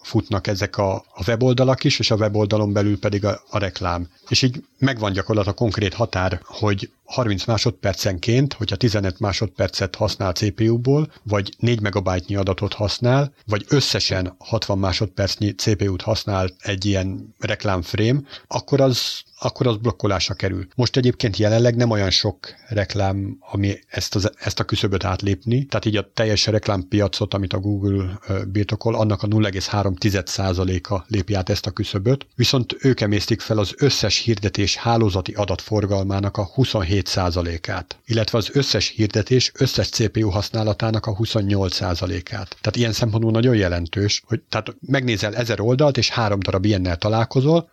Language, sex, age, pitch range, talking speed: Hungarian, male, 60-79, 100-115 Hz, 150 wpm